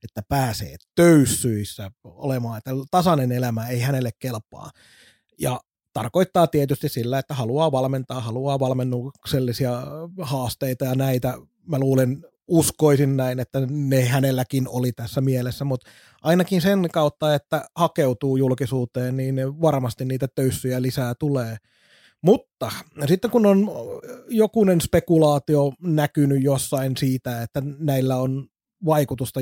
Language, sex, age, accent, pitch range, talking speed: Finnish, male, 30-49, native, 125-150 Hz, 120 wpm